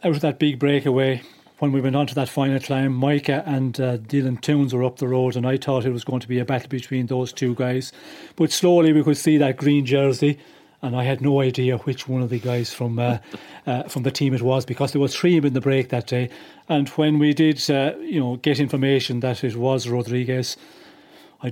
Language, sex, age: English, male, 30-49